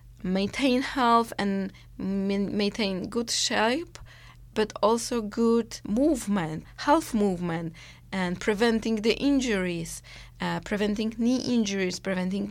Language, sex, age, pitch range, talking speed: English, female, 20-39, 185-225 Hz, 100 wpm